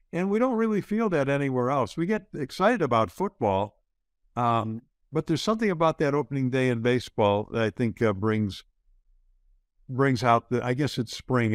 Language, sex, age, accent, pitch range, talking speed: English, male, 60-79, American, 115-170 Hz, 180 wpm